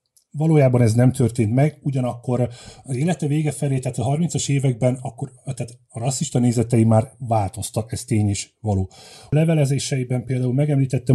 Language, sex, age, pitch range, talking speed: Hungarian, male, 30-49, 115-135 Hz, 155 wpm